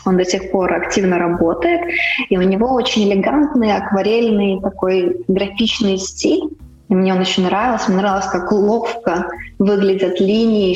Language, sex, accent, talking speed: Russian, female, native, 145 wpm